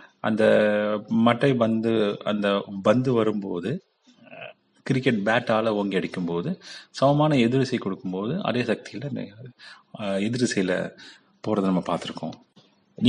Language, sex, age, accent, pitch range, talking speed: English, male, 30-49, Indian, 95-125 Hz, 75 wpm